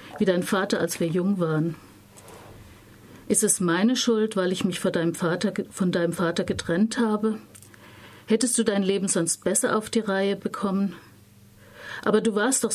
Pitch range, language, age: 160-220 Hz, German, 50-69